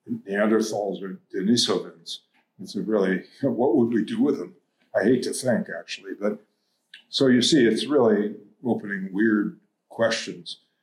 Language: English